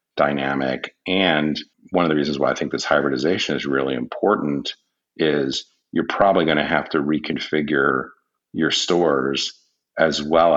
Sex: male